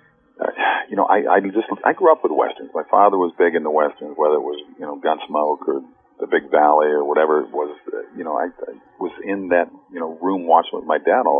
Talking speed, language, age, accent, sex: 245 wpm, English, 50-69, American, male